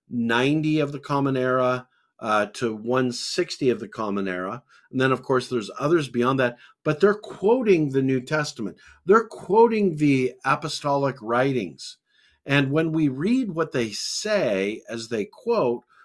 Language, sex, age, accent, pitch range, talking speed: English, male, 50-69, American, 120-155 Hz, 155 wpm